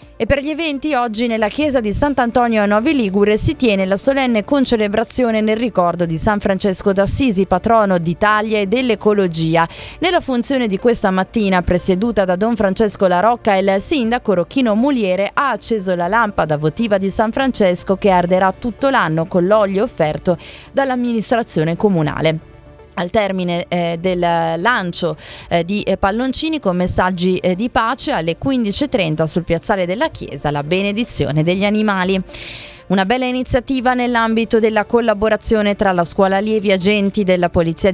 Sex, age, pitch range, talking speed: female, 20-39, 175-235 Hz, 150 wpm